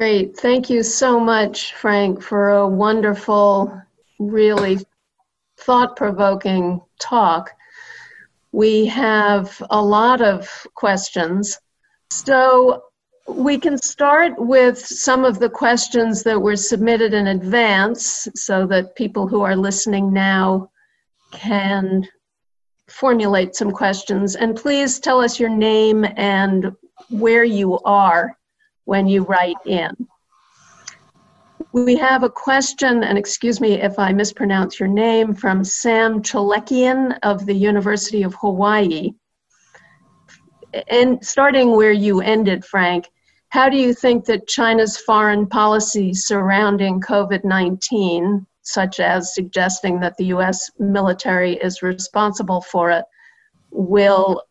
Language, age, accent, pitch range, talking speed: English, 50-69, American, 195-235 Hz, 115 wpm